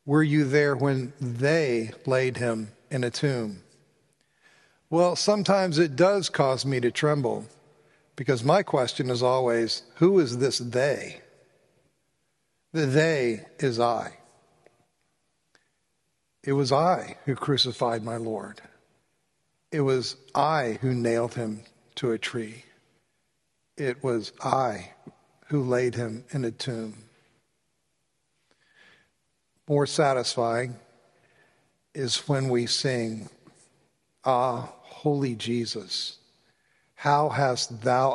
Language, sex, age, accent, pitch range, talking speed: English, male, 50-69, American, 120-150 Hz, 105 wpm